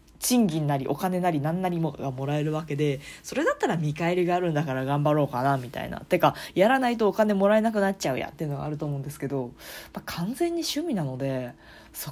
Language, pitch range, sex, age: Japanese, 145-220 Hz, female, 20-39